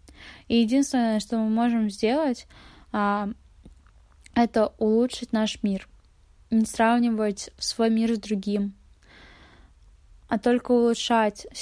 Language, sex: Russian, female